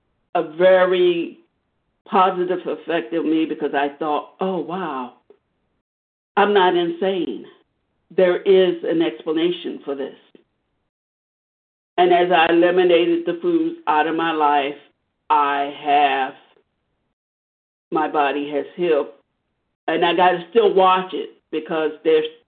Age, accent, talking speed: 50-69, American, 120 wpm